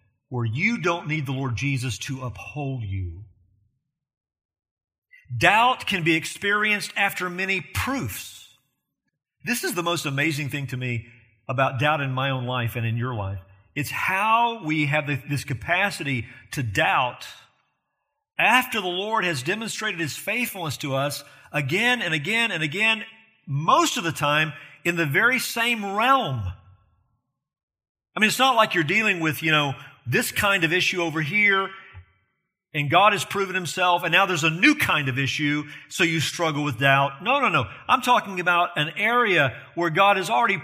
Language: English